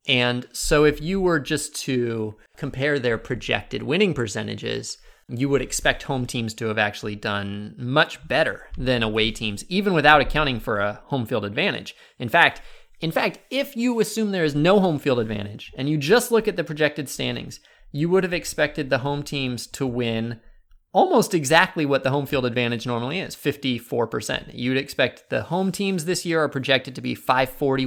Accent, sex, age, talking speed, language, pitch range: American, male, 30-49, 185 wpm, English, 120-160 Hz